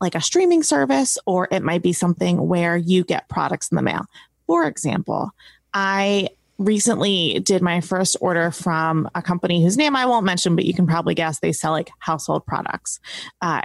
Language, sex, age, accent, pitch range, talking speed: English, female, 20-39, American, 170-215 Hz, 190 wpm